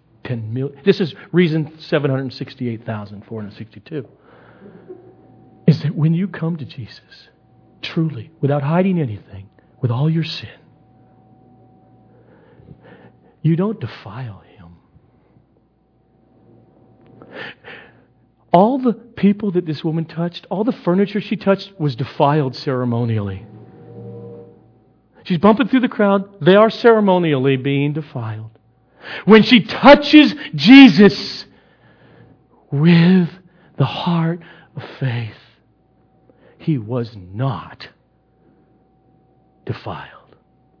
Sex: male